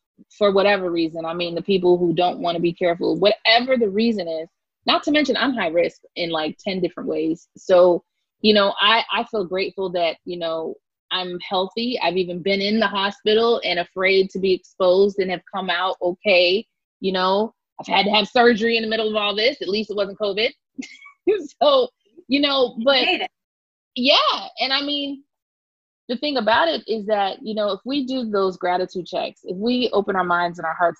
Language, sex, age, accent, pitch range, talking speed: English, female, 30-49, American, 185-245 Hz, 200 wpm